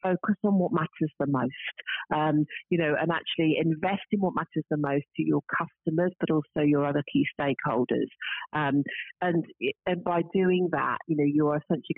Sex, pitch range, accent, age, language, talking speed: female, 150-180 Hz, British, 40-59, English, 180 wpm